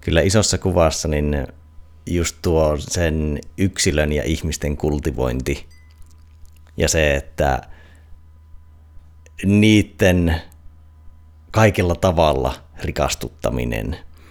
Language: Finnish